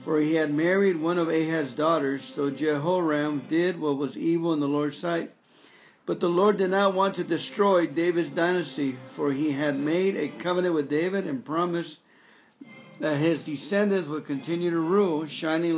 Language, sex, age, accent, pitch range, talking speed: English, male, 50-69, American, 150-180 Hz, 175 wpm